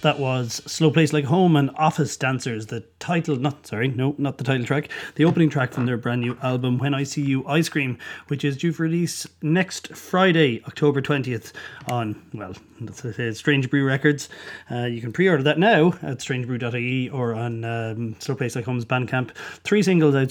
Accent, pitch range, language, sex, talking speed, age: Irish, 120-145 Hz, English, male, 185 wpm, 30-49